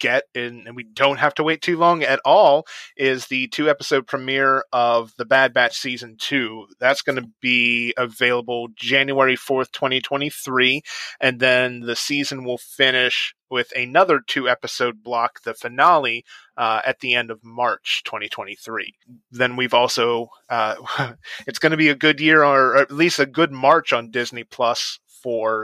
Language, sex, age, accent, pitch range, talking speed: English, male, 30-49, American, 120-135 Hz, 160 wpm